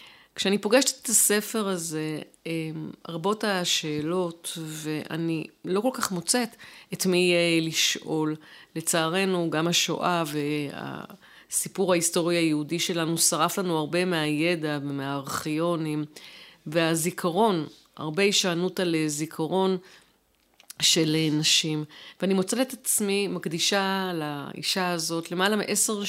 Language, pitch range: Hebrew, 155-190 Hz